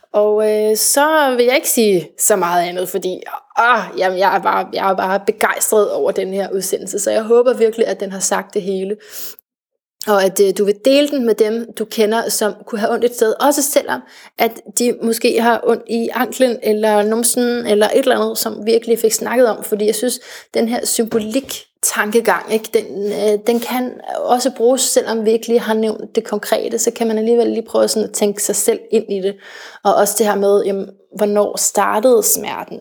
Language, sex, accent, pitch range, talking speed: Danish, female, native, 205-240 Hz, 200 wpm